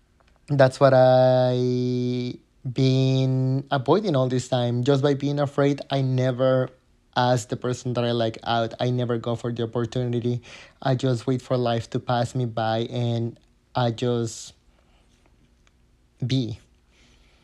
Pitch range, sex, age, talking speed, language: 120-140 Hz, male, 20-39, 140 wpm, English